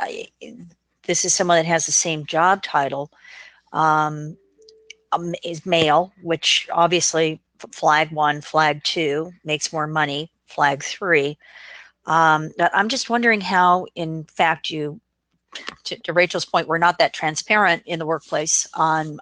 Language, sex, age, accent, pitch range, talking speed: English, female, 40-59, American, 155-190 Hz, 140 wpm